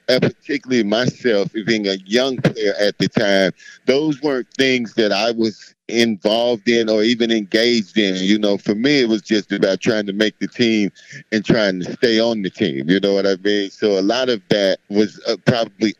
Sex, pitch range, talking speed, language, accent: male, 100-120 Hz, 205 wpm, English, American